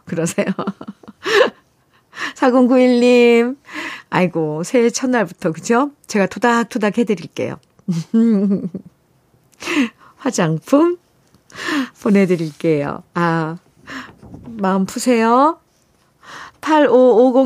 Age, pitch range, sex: 40-59, 180-270 Hz, female